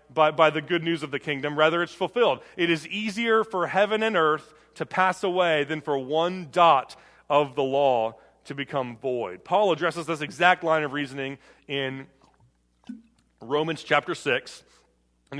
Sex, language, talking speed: male, English, 170 wpm